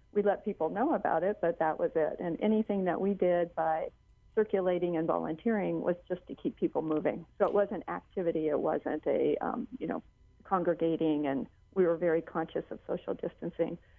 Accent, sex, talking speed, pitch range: American, female, 190 wpm, 170-210 Hz